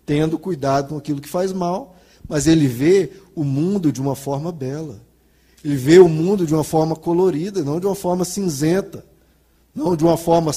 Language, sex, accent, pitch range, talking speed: Portuguese, male, Brazilian, 135-170 Hz, 185 wpm